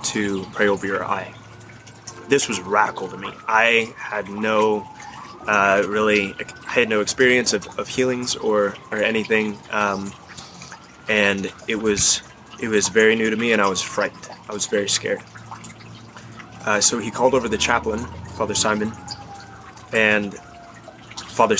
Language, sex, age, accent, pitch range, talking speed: English, male, 20-39, American, 100-115 Hz, 150 wpm